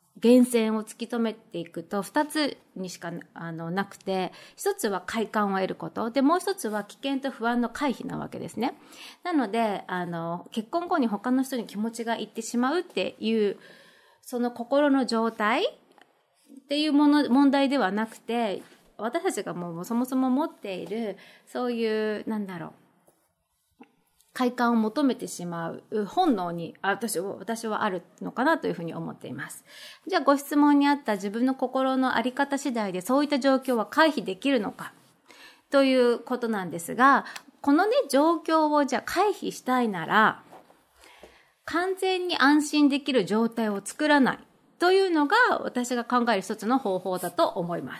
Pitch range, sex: 195-280 Hz, female